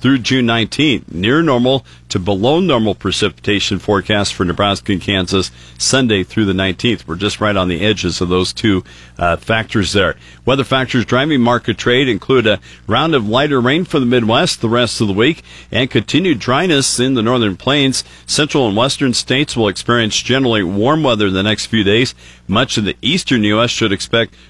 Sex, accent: male, American